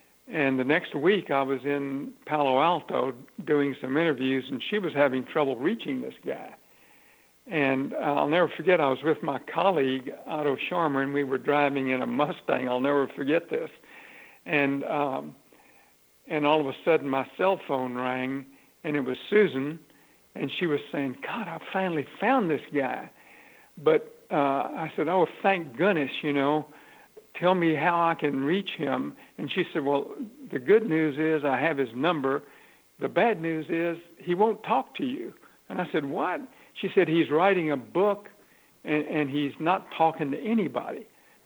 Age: 60-79